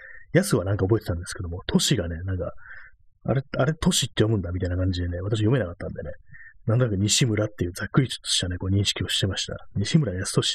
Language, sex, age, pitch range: Japanese, male, 30-49, 95-120 Hz